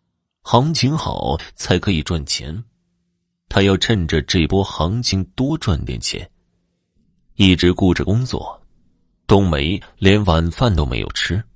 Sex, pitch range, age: male, 85-115 Hz, 30-49